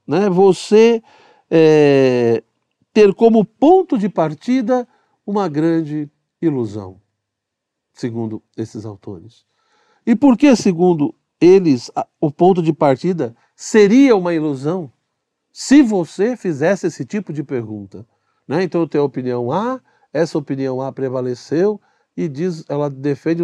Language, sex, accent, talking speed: Portuguese, male, Brazilian, 125 wpm